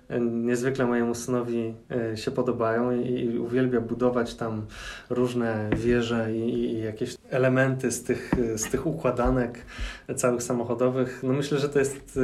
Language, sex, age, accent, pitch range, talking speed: Polish, male, 20-39, native, 120-130 Hz, 140 wpm